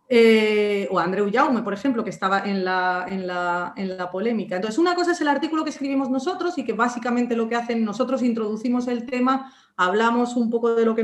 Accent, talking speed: Spanish, 215 wpm